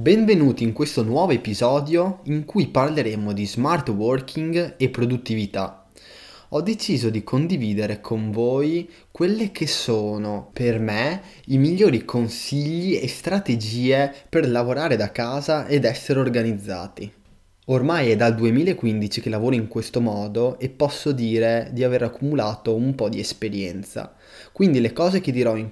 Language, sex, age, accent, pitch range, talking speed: Italian, male, 20-39, native, 110-140 Hz, 140 wpm